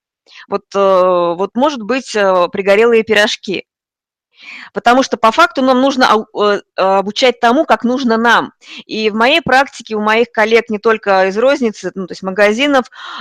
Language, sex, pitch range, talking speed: Russian, female, 195-245 Hz, 145 wpm